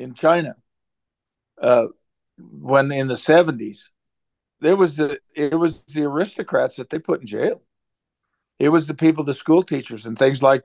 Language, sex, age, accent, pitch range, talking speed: English, male, 50-69, American, 135-165 Hz, 165 wpm